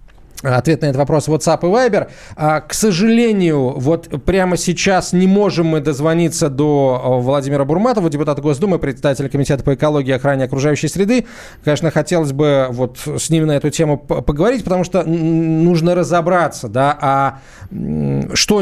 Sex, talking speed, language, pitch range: male, 155 wpm, Russian, 125-160 Hz